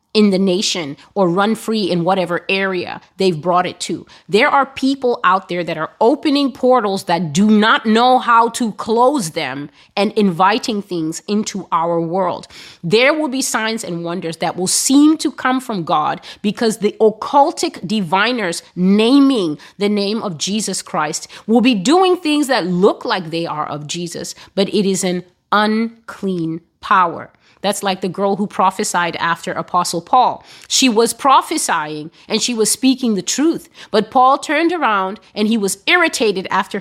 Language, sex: English, female